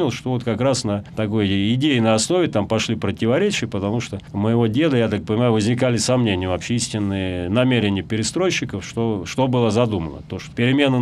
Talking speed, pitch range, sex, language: 175 wpm, 105-135 Hz, male, Russian